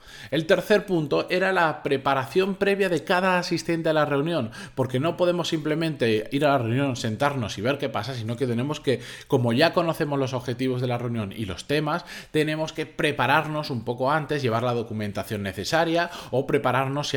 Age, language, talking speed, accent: 20-39, Spanish, 190 wpm, Spanish